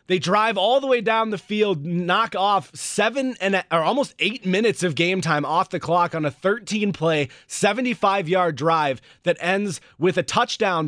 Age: 30-49